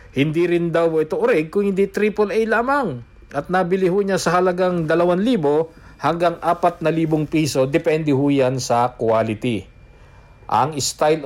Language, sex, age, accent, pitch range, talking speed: English, male, 50-69, Filipino, 140-190 Hz, 135 wpm